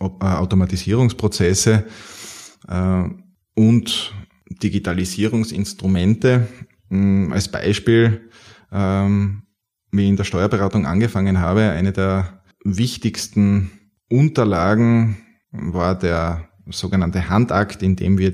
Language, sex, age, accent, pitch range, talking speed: German, male, 20-39, Austrian, 90-100 Hz, 70 wpm